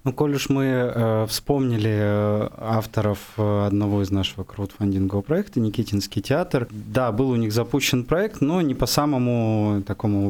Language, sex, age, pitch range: Russian, male, 20-39, 105-130 Hz